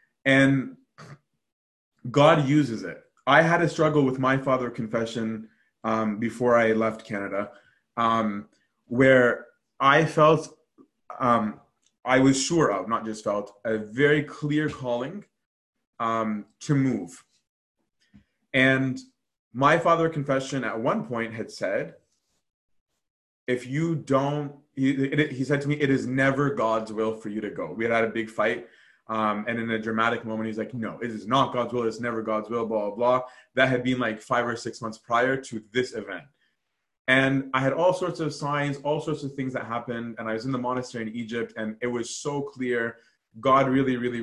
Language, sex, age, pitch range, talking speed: English, male, 20-39, 110-140 Hz, 175 wpm